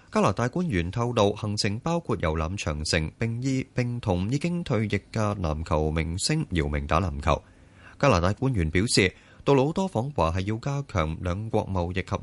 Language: Chinese